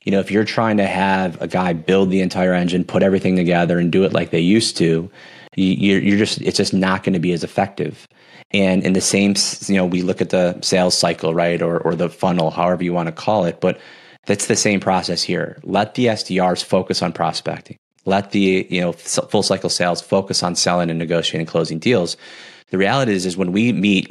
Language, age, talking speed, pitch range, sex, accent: English, 30-49, 220 wpm, 90-100 Hz, male, American